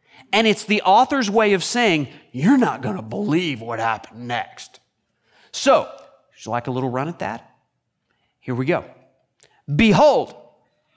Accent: American